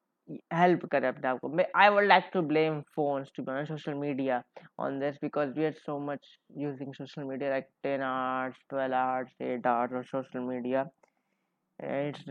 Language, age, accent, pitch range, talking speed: Hindi, 20-39, native, 130-160 Hz, 170 wpm